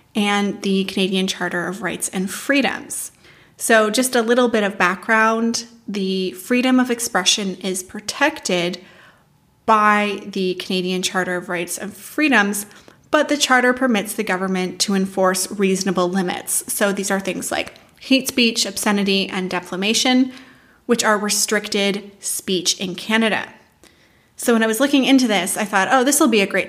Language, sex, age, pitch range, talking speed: English, female, 30-49, 190-235 Hz, 155 wpm